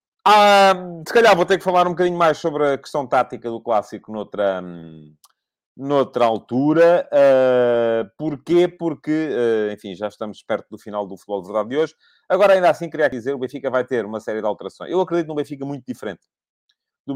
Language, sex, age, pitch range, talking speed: Portuguese, male, 30-49, 115-165 Hz, 185 wpm